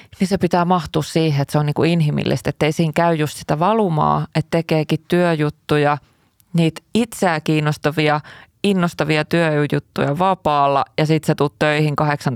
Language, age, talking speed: Finnish, 20-39, 160 wpm